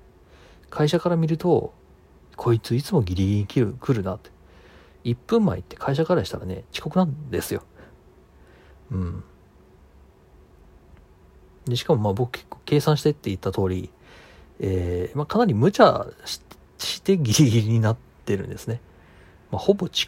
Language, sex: Japanese, male